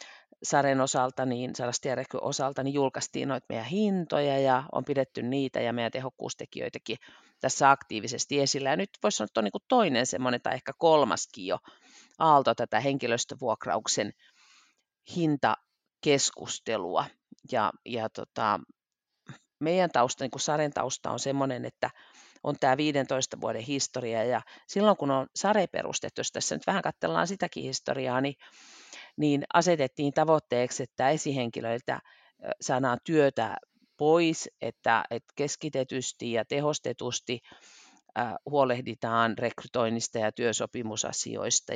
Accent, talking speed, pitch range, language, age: native, 115 wpm, 125-150 Hz, Finnish, 40-59